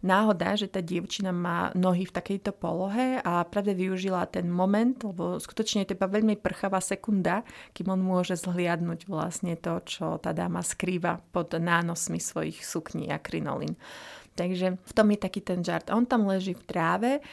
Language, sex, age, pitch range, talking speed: Slovak, female, 30-49, 185-215 Hz, 175 wpm